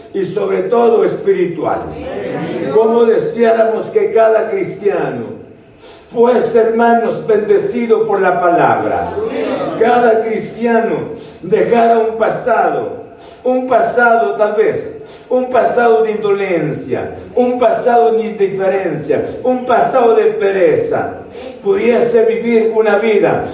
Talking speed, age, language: 100 wpm, 60-79, Spanish